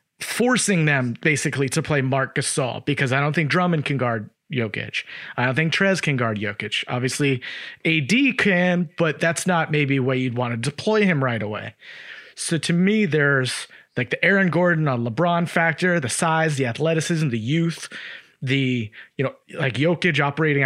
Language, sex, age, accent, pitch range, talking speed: English, male, 30-49, American, 140-175 Hz, 175 wpm